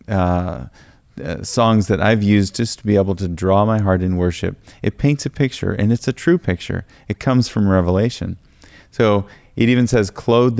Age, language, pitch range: 30-49, English, 95-115 Hz